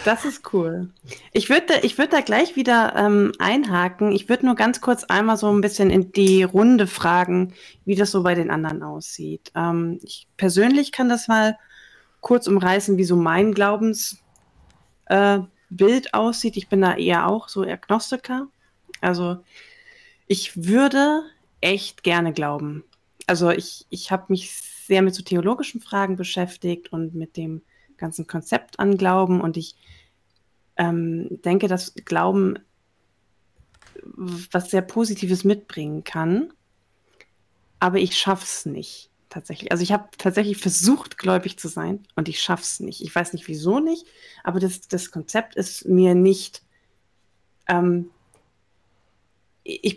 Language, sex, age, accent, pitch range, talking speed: German, female, 20-39, German, 170-210 Hz, 145 wpm